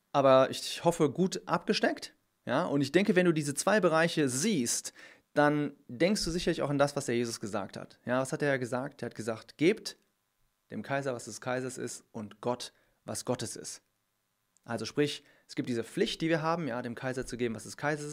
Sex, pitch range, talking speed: male, 115-150 Hz, 215 wpm